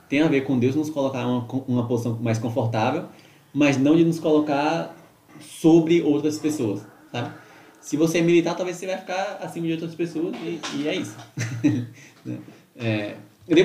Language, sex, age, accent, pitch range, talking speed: Portuguese, male, 20-39, Brazilian, 115-155 Hz, 170 wpm